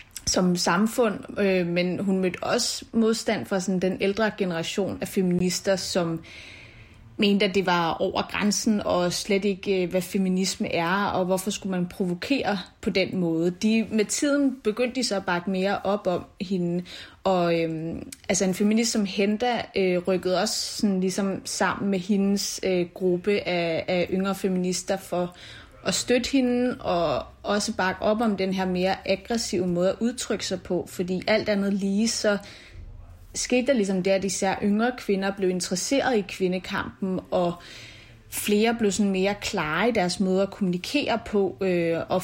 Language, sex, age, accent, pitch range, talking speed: Danish, female, 30-49, native, 180-210 Hz, 165 wpm